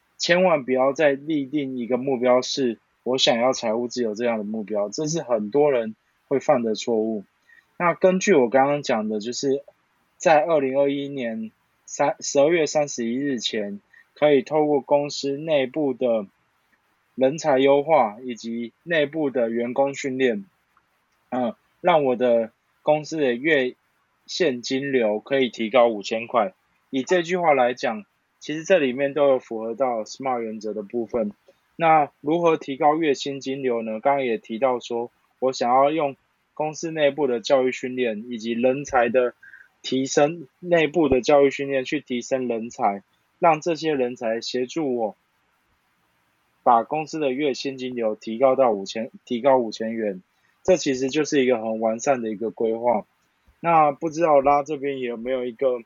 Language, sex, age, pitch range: Chinese, male, 20-39, 115-145 Hz